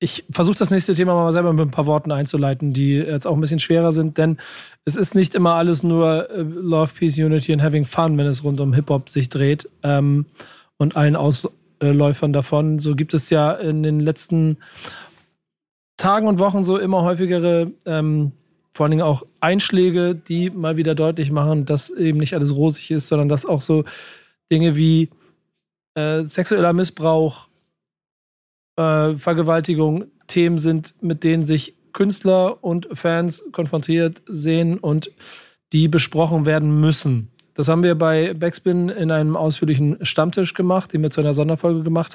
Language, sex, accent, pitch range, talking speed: German, male, German, 150-170 Hz, 165 wpm